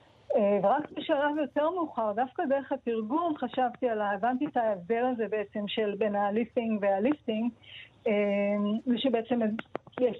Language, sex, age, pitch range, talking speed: Hebrew, female, 40-59, 210-255 Hz, 120 wpm